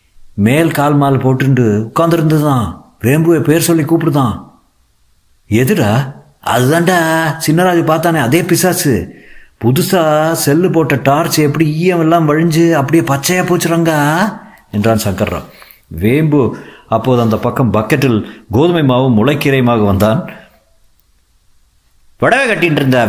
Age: 50-69